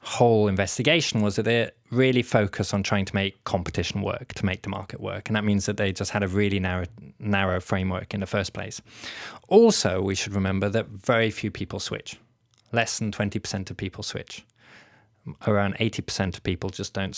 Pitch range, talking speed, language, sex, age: 100-130 Hz, 190 wpm, English, male, 20-39